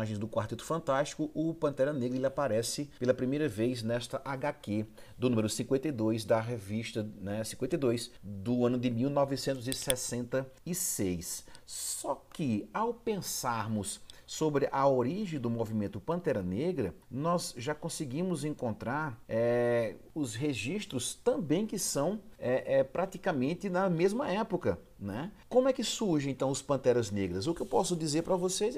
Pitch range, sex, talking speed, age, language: 115-175 Hz, male, 135 wpm, 40-59, Portuguese